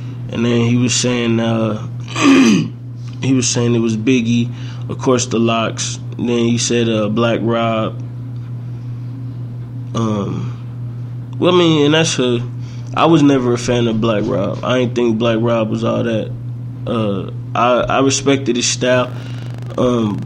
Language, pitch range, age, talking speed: English, 120-125 Hz, 20-39, 155 wpm